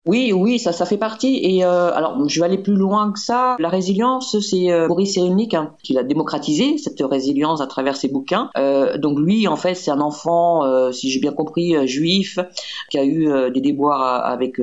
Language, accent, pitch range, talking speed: French, French, 140-180 Hz, 220 wpm